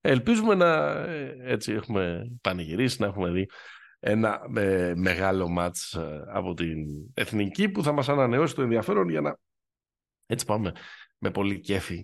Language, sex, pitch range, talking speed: Greek, male, 85-125 Hz, 130 wpm